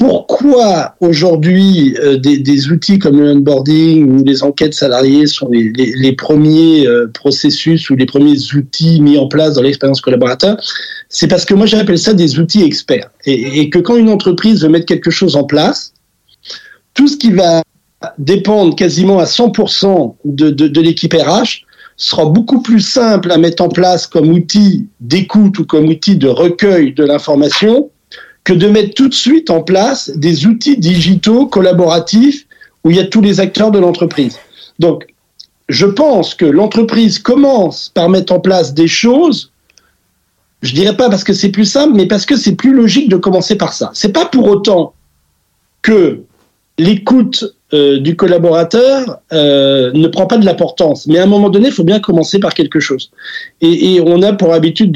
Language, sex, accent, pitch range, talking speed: French, male, French, 155-215 Hz, 180 wpm